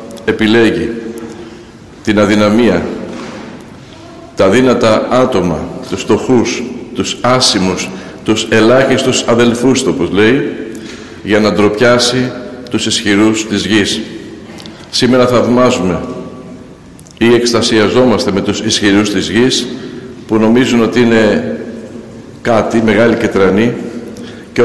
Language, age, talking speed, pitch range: Greek, 60-79, 95 wpm, 110-125 Hz